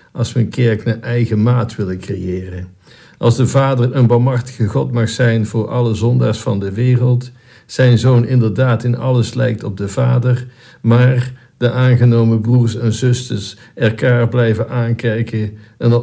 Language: Dutch